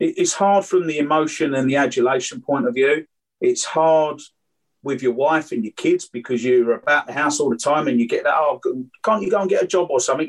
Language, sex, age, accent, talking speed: English, male, 30-49, British, 240 wpm